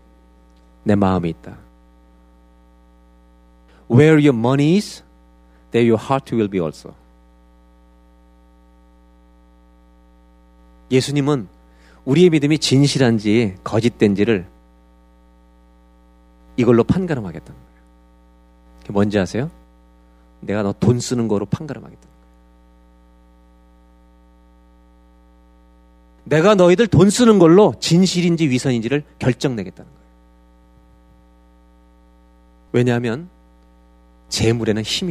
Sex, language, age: male, Korean, 40-59